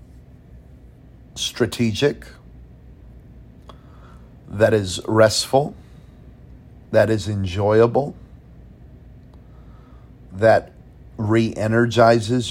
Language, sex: English, male